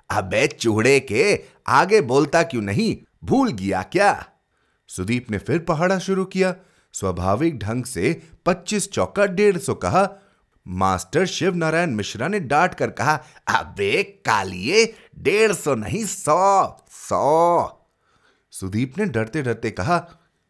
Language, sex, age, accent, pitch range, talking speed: Hindi, male, 30-49, native, 130-220 Hz, 90 wpm